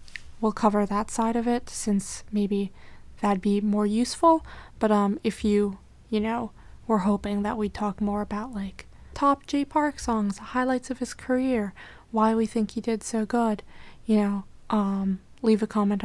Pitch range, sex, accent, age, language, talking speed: 210-235 Hz, female, American, 20-39, English, 175 wpm